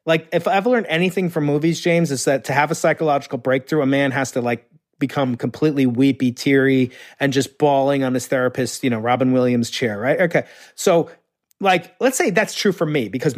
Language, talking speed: English, 205 wpm